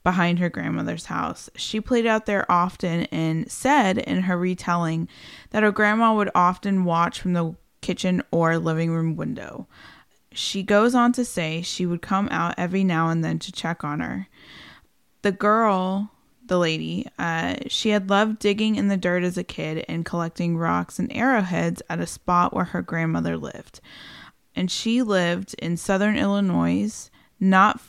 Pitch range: 170-205 Hz